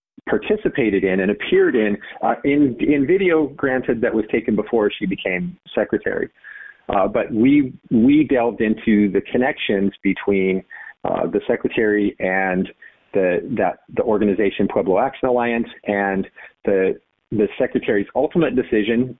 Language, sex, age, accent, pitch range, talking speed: English, male, 40-59, American, 100-130 Hz, 135 wpm